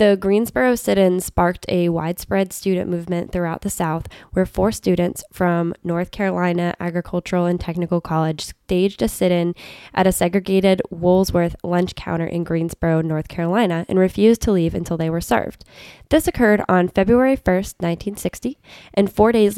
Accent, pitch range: American, 175-205 Hz